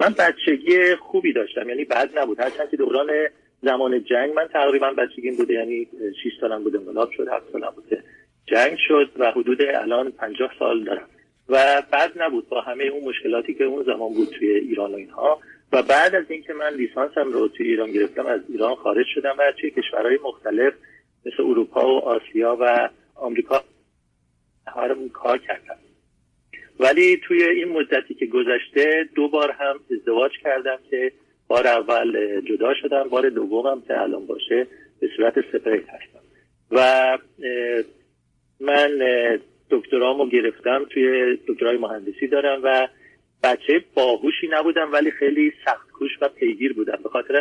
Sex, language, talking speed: male, Persian, 150 wpm